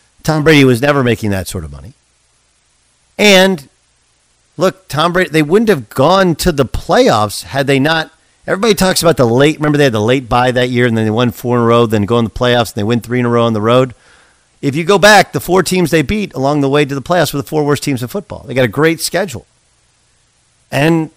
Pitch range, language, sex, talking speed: 120-175 Hz, English, male, 245 wpm